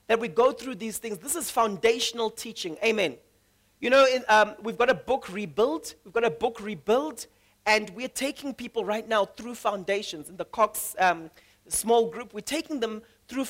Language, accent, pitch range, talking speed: English, South African, 210-270 Hz, 190 wpm